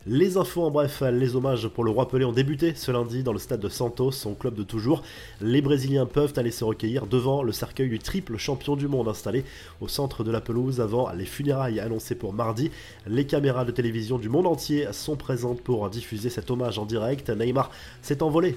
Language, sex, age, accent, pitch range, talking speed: French, male, 20-39, French, 115-140 Hz, 215 wpm